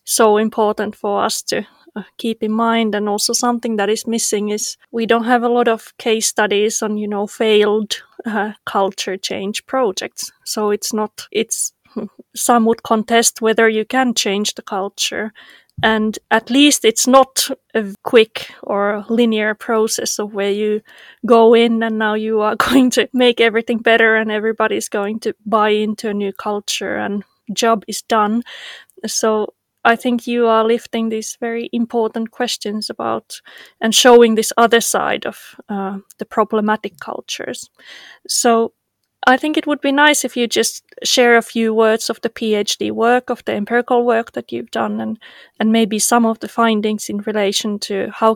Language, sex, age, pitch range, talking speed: English, female, 20-39, 210-235 Hz, 170 wpm